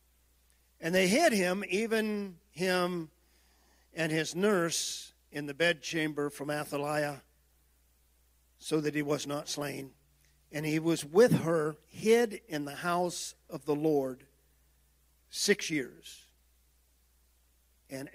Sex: male